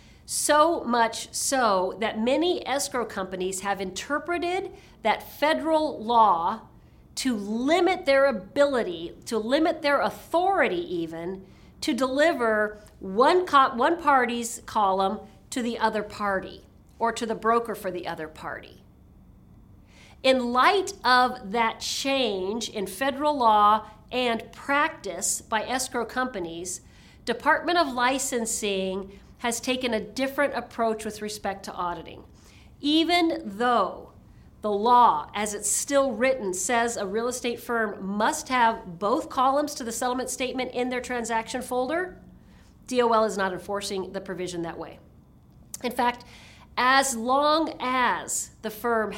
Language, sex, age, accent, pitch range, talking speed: English, female, 40-59, American, 210-275 Hz, 130 wpm